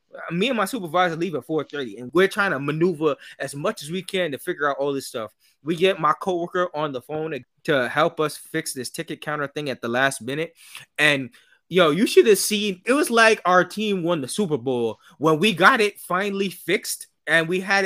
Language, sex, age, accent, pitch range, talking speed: English, male, 20-39, American, 140-195 Hz, 225 wpm